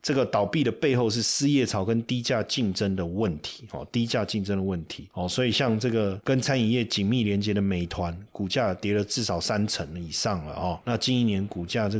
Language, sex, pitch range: Chinese, male, 105-135 Hz